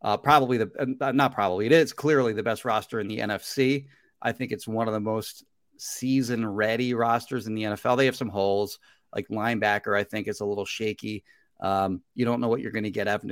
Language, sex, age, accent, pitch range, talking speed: English, male, 30-49, American, 105-125 Hz, 225 wpm